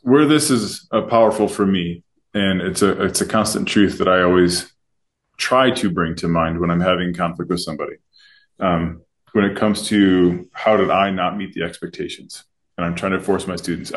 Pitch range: 90-120 Hz